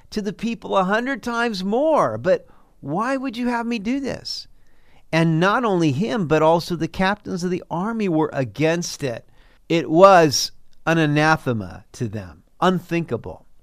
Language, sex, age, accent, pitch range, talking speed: English, male, 50-69, American, 120-165 Hz, 160 wpm